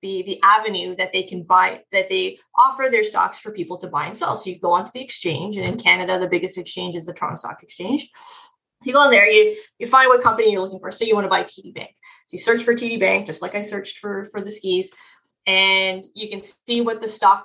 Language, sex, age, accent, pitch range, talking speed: English, female, 20-39, American, 190-245 Hz, 260 wpm